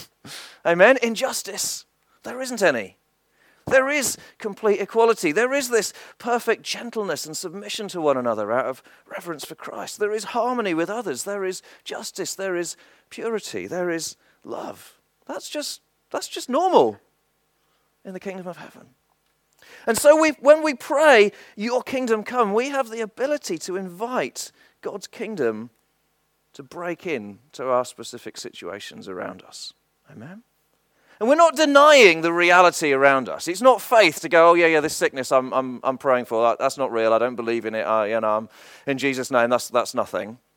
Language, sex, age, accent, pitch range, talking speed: English, male, 40-59, British, 150-245 Hz, 170 wpm